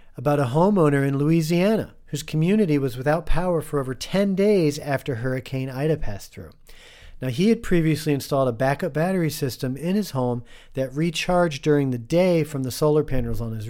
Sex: male